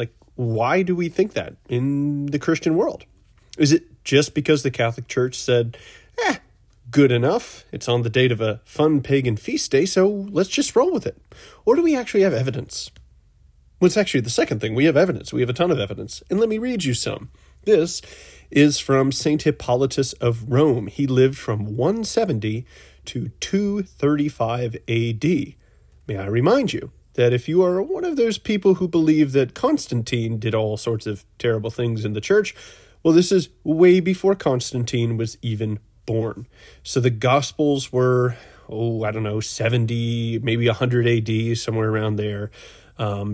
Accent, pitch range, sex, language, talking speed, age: American, 110-155 Hz, male, English, 175 wpm, 30-49